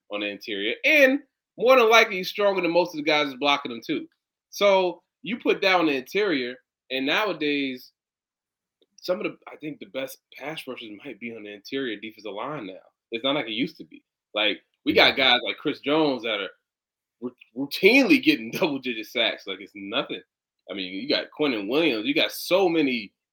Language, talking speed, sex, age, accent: English, 200 wpm, male, 20-39, American